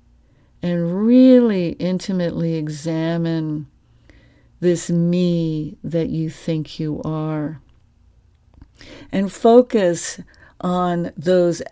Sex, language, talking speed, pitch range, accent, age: female, English, 75 wpm, 155-180 Hz, American, 60-79